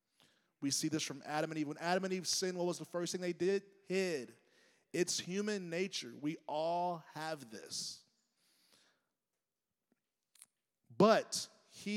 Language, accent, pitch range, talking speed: English, American, 135-170 Hz, 145 wpm